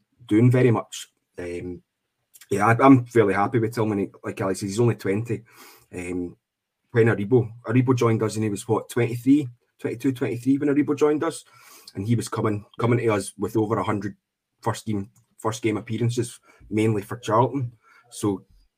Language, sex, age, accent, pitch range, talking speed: English, male, 20-39, British, 100-120 Hz, 175 wpm